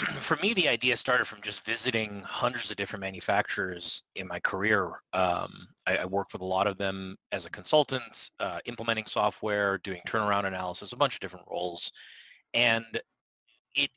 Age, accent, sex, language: 30-49, American, male, English